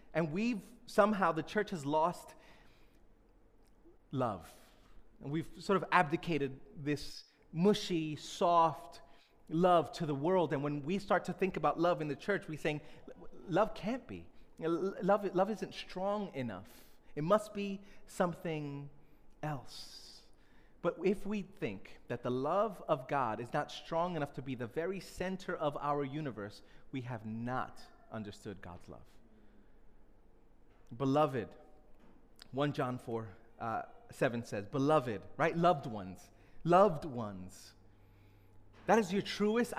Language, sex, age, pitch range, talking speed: English, male, 30-49, 125-185 Hz, 135 wpm